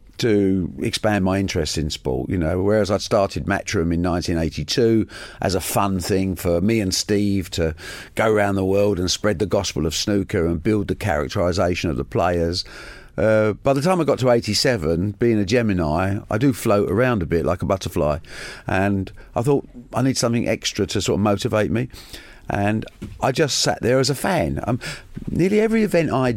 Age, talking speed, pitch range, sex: 50-69, 195 wpm, 90-120 Hz, male